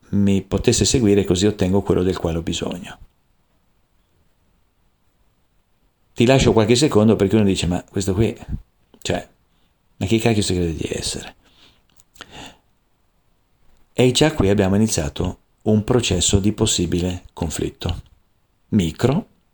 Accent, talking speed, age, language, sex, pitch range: native, 120 wpm, 50-69, Italian, male, 95-115 Hz